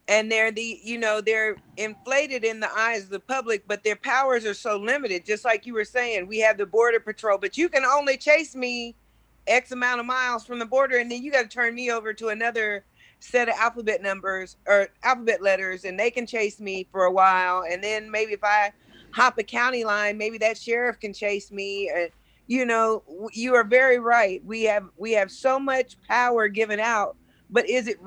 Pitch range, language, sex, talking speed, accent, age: 205-245 Hz, English, female, 215 wpm, American, 40-59